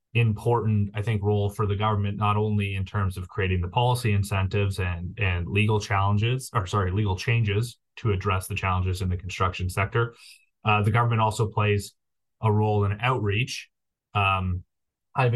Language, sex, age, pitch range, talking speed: English, male, 20-39, 100-115 Hz, 170 wpm